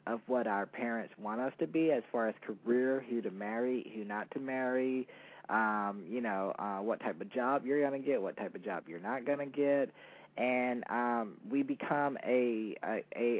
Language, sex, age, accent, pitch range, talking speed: English, male, 20-39, American, 110-130 Hz, 195 wpm